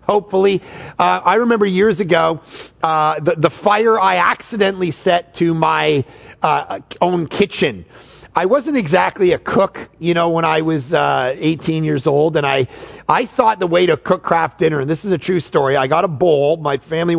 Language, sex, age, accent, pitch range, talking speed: English, male, 40-59, American, 155-205 Hz, 190 wpm